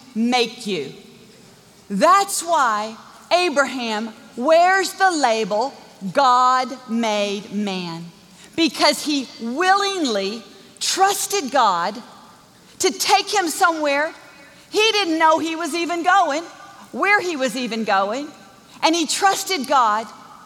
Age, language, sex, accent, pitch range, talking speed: 50-69, English, female, American, 225-330 Hz, 105 wpm